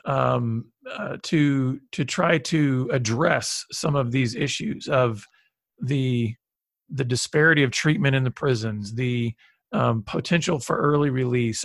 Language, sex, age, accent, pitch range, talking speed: English, male, 40-59, American, 130-165 Hz, 135 wpm